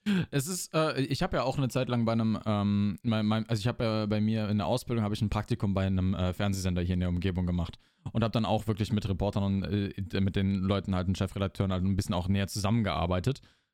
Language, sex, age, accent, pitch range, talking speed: German, male, 20-39, German, 100-125 Hz, 250 wpm